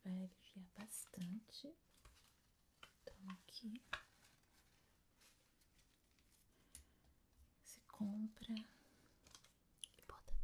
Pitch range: 185-215 Hz